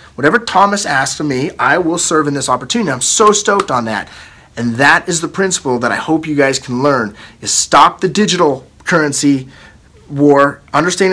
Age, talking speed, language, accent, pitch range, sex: 30-49, 190 wpm, English, American, 145-190 Hz, male